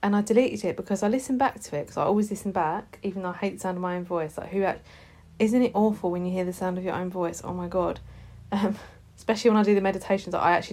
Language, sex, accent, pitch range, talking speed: English, female, British, 180-210 Hz, 295 wpm